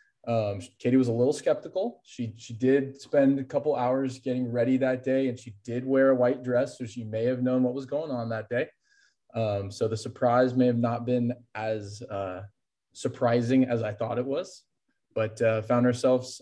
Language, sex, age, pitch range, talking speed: English, male, 20-39, 120-135 Hz, 200 wpm